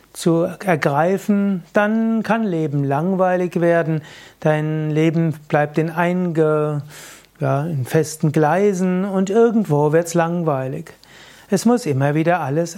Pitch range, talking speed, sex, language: 150-185 Hz, 115 wpm, male, German